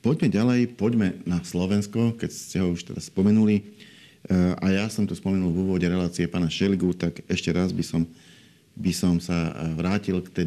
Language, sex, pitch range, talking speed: Slovak, male, 90-105 Hz, 185 wpm